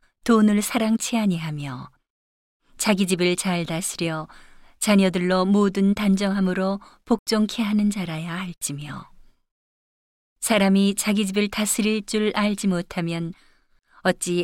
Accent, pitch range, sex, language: native, 175-205 Hz, female, Korean